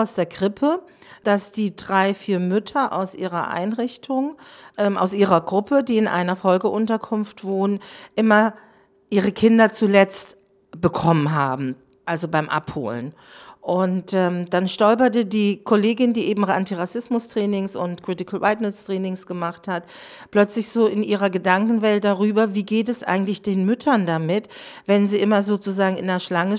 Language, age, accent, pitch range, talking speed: German, 40-59, German, 190-225 Hz, 140 wpm